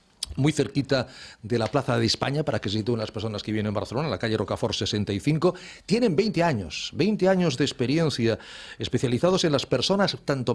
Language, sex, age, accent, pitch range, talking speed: Spanish, male, 40-59, Spanish, 115-160 Hz, 195 wpm